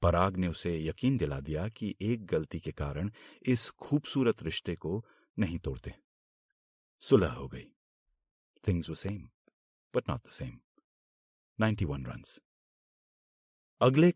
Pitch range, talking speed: 80-110 Hz, 125 wpm